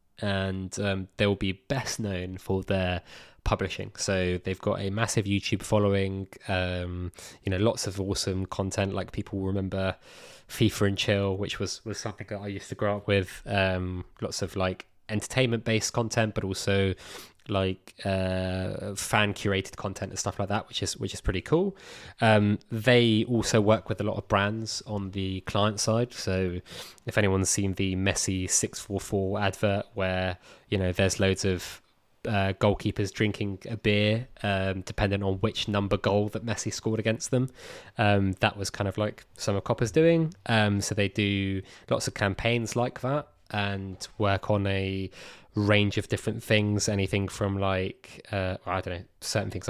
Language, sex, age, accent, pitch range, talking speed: English, male, 20-39, British, 95-110 Hz, 175 wpm